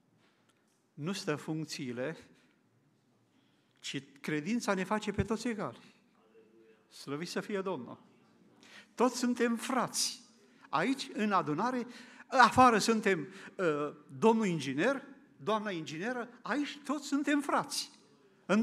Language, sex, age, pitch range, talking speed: Romanian, male, 50-69, 175-250 Hz, 100 wpm